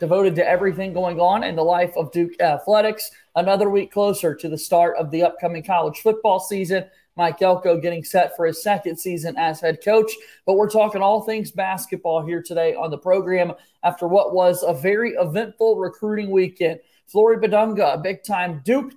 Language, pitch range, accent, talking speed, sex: English, 170-215 Hz, American, 185 wpm, male